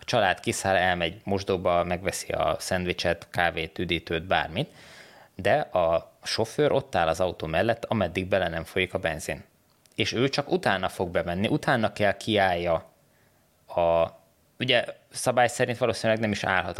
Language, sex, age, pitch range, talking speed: Hungarian, male, 20-39, 90-120 Hz, 150 wpm